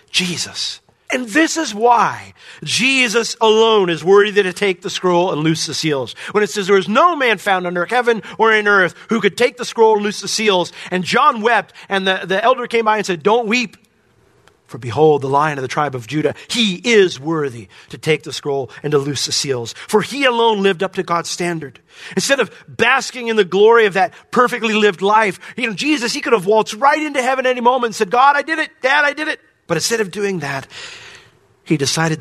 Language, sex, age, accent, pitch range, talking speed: English, male, 40-59, American, 130-215 Hz, 225 wpm